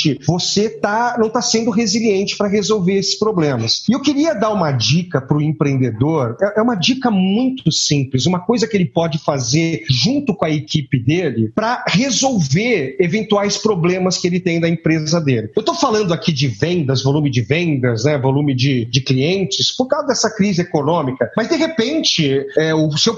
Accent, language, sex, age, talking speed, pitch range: Brazilian, Portuguese, male, 40-59, 175 wpm, 145-210 Hz